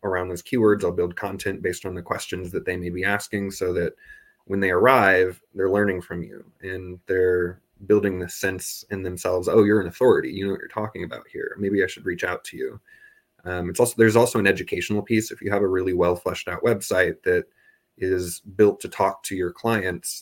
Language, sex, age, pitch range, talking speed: English, male, 20-39, 90-110 Hz, 215 wpm